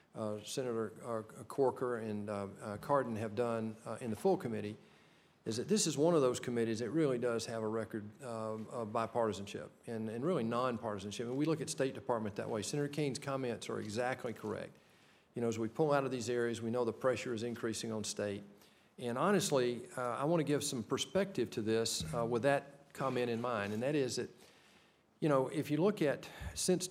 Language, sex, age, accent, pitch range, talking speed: English, male, 40-59, American, 115-145 Hz, 210 wpm